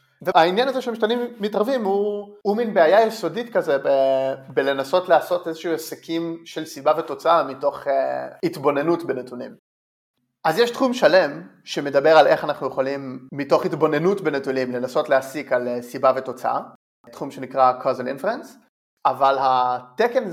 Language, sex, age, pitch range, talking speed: Hebrew, male, 30-49, 135-205 Hz, 135 wpm